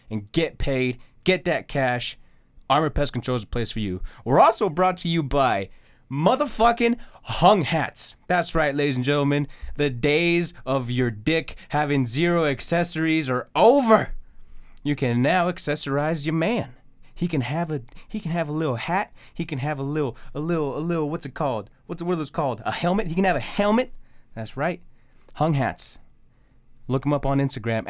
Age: 30-49